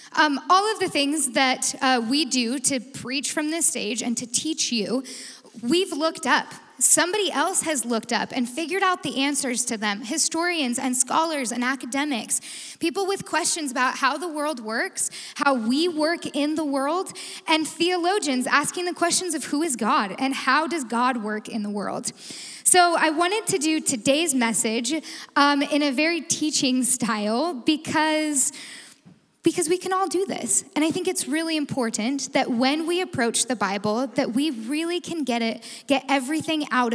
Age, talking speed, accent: 10-29, 180 wpm, American